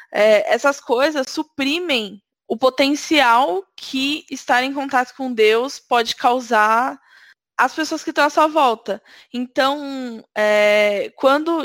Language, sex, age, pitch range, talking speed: Portuguese, female, 10-29, 225-280 Hz, 125 wpm